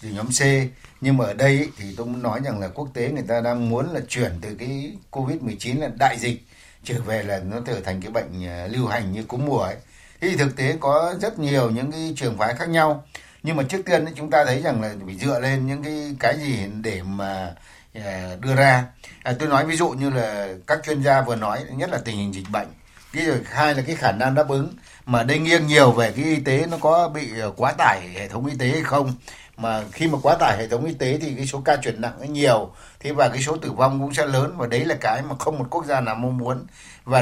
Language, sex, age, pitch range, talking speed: Vietnamese, male, 60-79, 120-150 Hz, 260 wpm